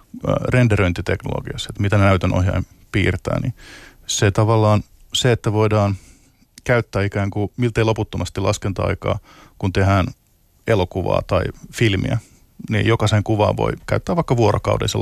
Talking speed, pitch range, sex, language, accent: 120 wpm, 95-115 Hz, male, Finnish, native